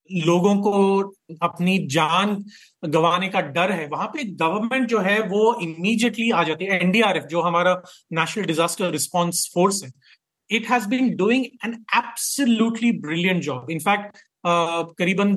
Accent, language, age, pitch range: native, Hindi, 30-49, 170-220 Hz